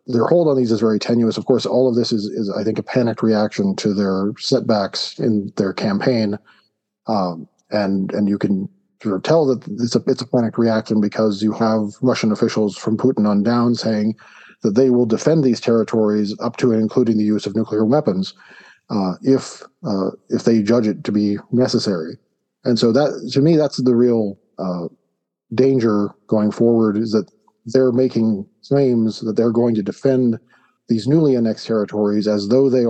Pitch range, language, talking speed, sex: 105-125 Hz, English, 190 wpm, male